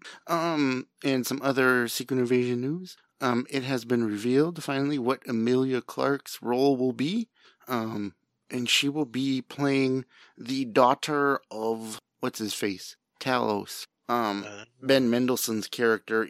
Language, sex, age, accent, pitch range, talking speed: English, male, 30-49, American, 110-130 Hz, 135 wpm